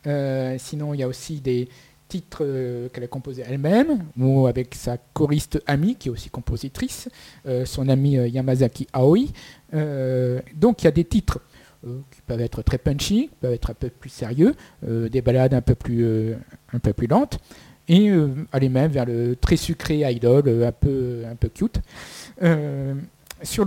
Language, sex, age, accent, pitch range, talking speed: French, male, 50-69, French, 125-155 Hz, 185 wpm